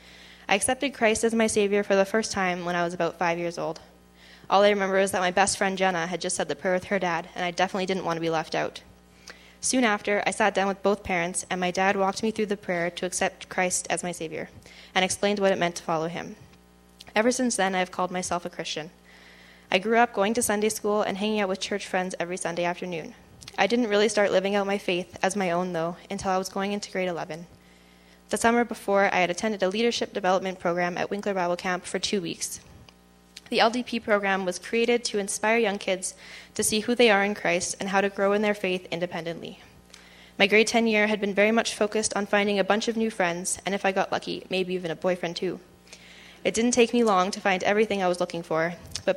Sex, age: female, 10-29